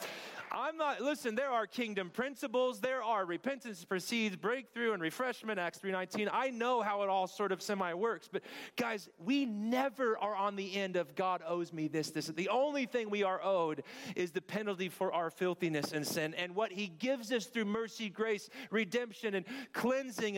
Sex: male